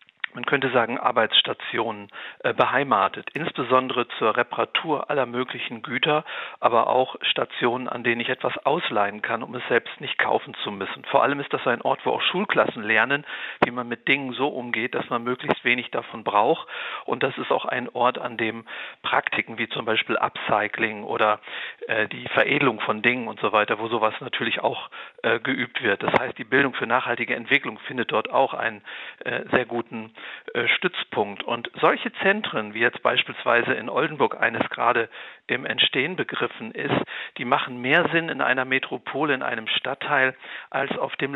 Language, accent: German, German